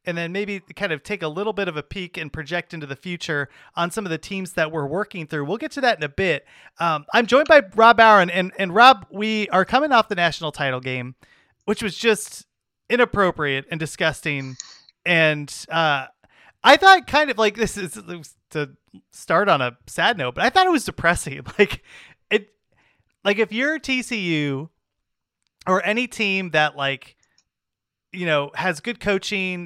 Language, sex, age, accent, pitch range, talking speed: English, male, 30-49, American, 145-205 Hz, 190 wpm